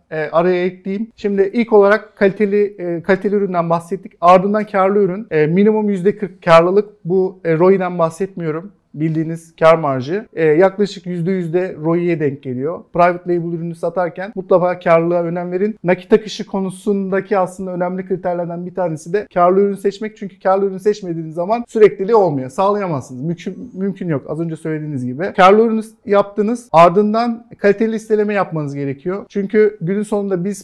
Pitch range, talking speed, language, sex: 170-210 Hz, 145 wpm, Turkish, male